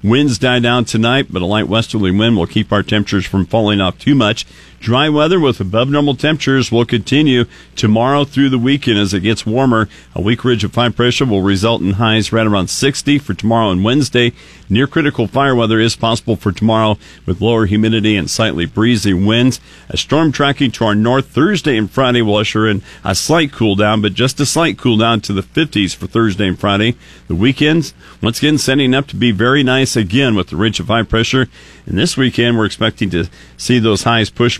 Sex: male